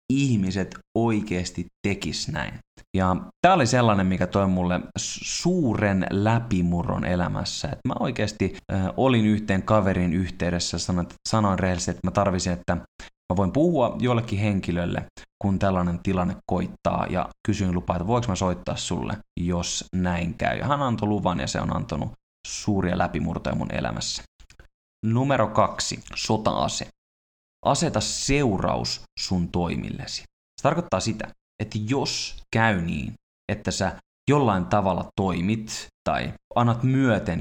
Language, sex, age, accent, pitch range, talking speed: Finnish, male, 20-39, native, 90-120 Hz, 135 wpm